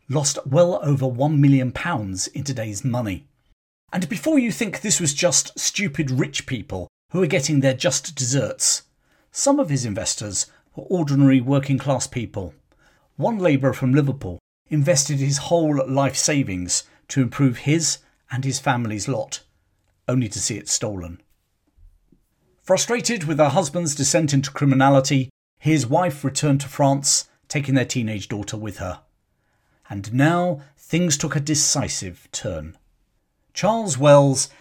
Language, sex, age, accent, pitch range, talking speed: English, male, 40-59, British, 125-160 Hz, 140 wpm